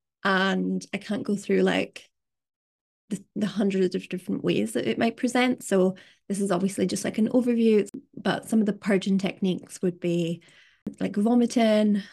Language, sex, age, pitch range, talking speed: English, female, 20-39, 185-230 Hz, 170 wpm